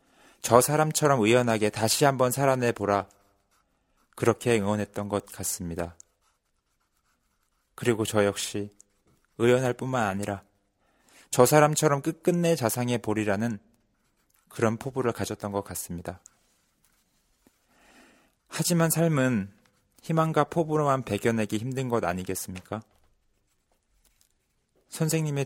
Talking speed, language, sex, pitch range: 80 wpm, English, male, 100-135 Hz